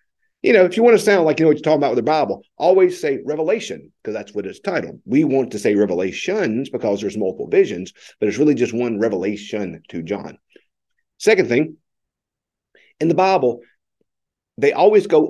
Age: 50-69